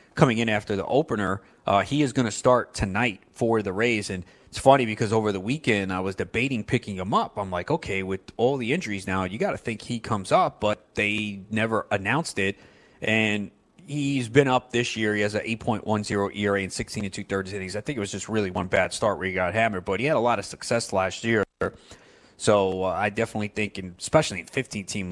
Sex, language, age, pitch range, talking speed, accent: male, English, 30-49, 100-120 Hz, 225 wpm, American